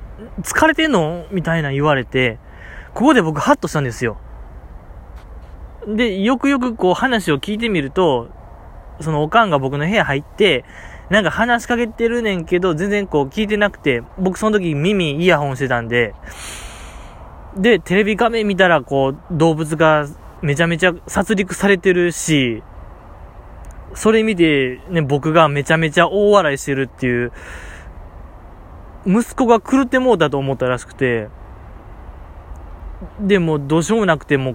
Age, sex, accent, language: 20-39, male, native, Japanese